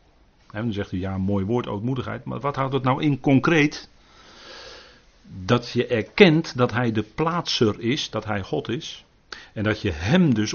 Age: 40-59